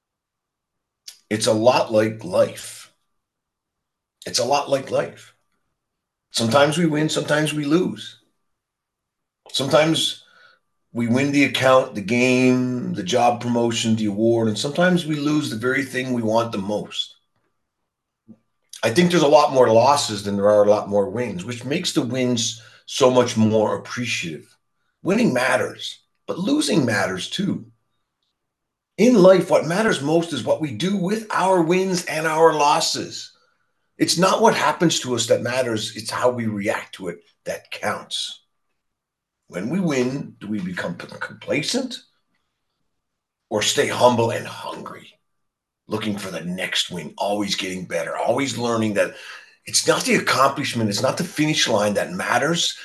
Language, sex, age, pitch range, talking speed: English, male, 40-59, 115-165 Hz, 150 wpm